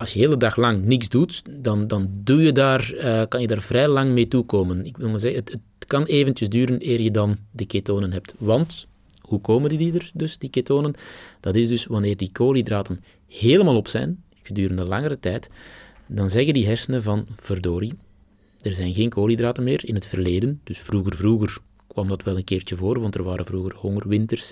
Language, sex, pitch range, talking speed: Dutch, male, 100-125 Hz, 210 wpm